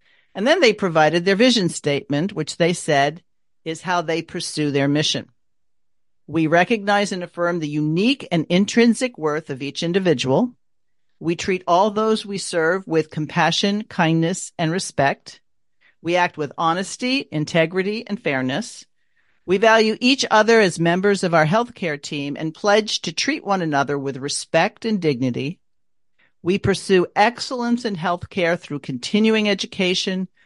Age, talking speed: 50-69, 150 wpm